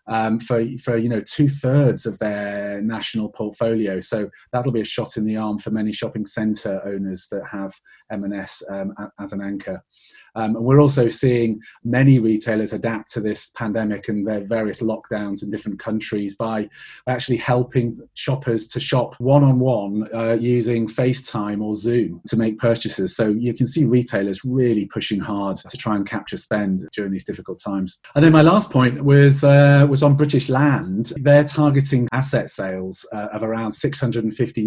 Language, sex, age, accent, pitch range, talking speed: English, male, 30-49, British, 105-125 Hz, 175 wpm